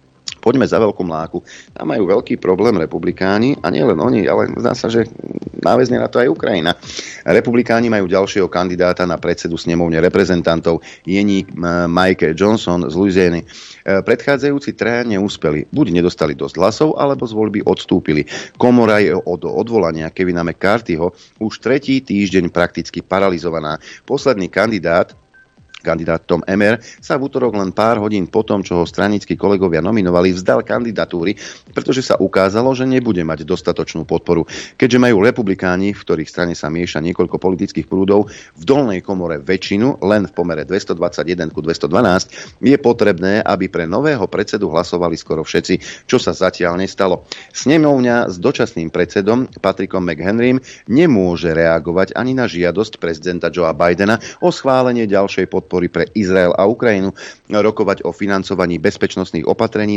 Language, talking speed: Slovak, 145 wpm